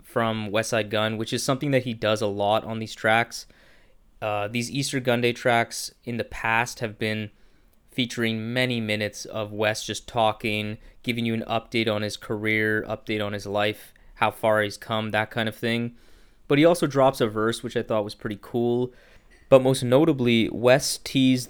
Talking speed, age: 190 wpm, 20-39